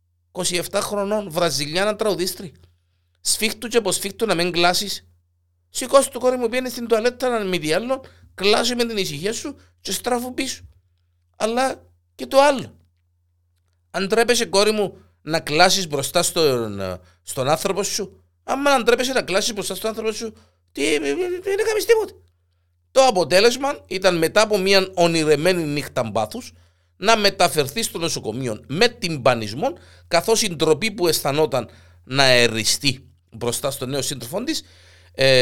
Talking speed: 140 wpm